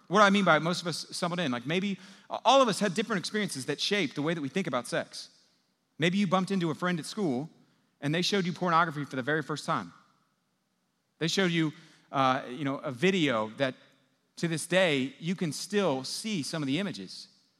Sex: male